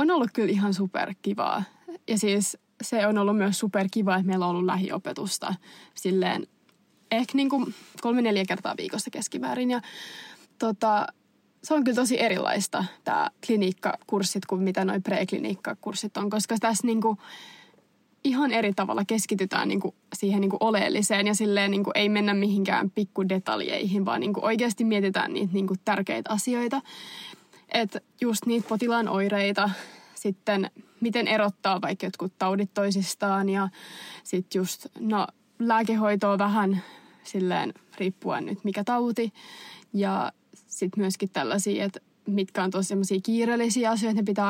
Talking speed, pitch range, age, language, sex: 135 wpm, 195-225 Hz, 20-39, Finnish, female